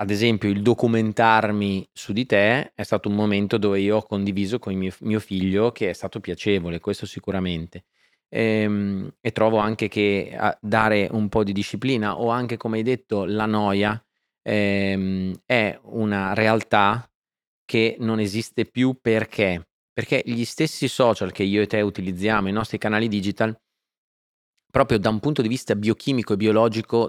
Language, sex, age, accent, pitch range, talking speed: Italian, male, 30-49, native, 100-115 Hz, 165 wpm